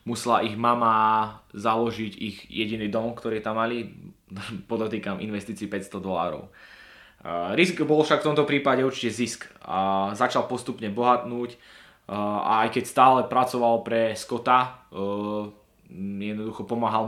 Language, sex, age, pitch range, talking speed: Slovak, male, 20-39, 100-115 Hz, 125 wpm